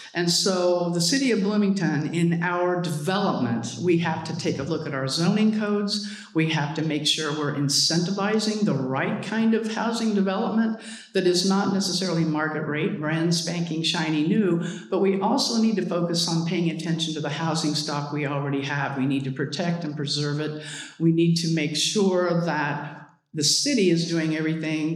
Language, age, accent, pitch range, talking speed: English, 50-69, American, 150-180 Hz, 185 wpm